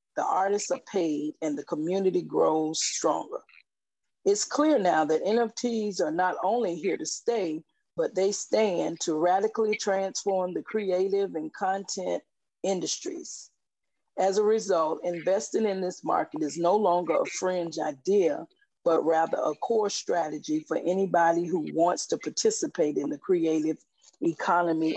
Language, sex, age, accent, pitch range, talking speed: English, female, 40-59, American, 170-235 Hz, 140 wpm